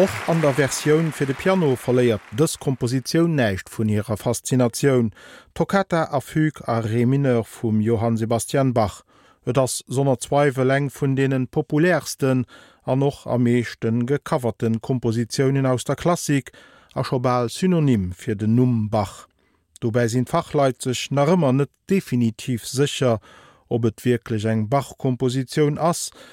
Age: 40-59